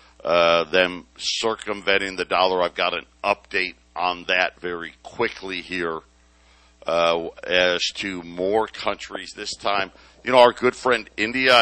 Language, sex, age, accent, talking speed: English, male, 60-79, American, 140 wpm